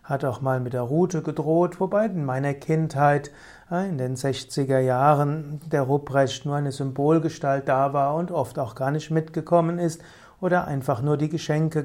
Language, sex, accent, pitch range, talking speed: German, male, German, 135-165 Hz, 170 wpm